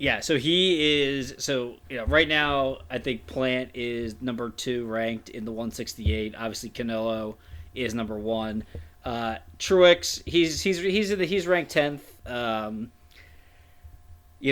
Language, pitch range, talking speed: English, 110-140 Hz, 150 wpm